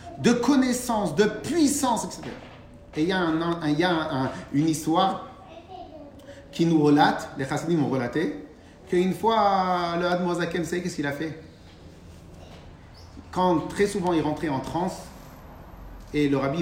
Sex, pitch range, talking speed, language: male, 135-220 Hz, 155 wpm, French